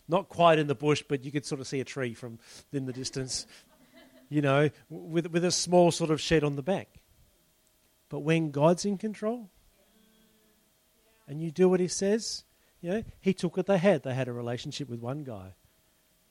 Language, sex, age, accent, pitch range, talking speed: English, male, 40-59, Australian, 120-185 Hz, 200 wpm